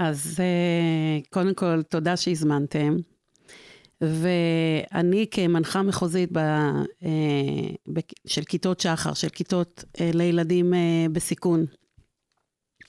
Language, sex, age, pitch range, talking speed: Hebrew, female, 50-69, 175-200 Hz, 75 wpm